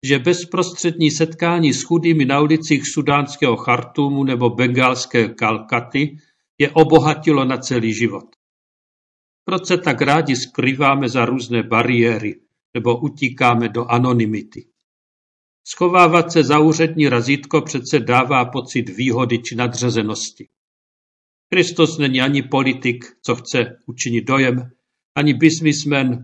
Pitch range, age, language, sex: 120-155 Hz, 50-69, Czech, male